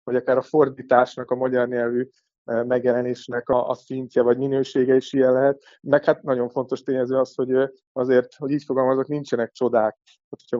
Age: 30-49